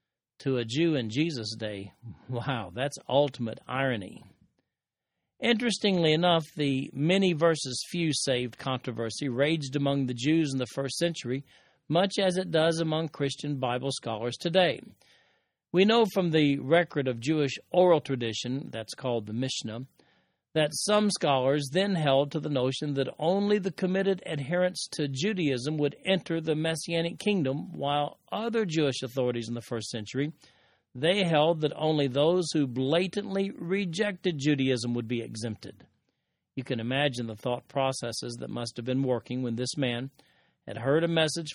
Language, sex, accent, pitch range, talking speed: English, male, American, 125-170 Hz, 155 wpm